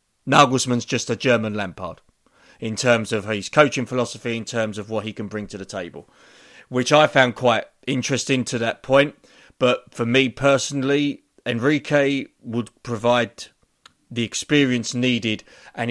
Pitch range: 115-130 Hz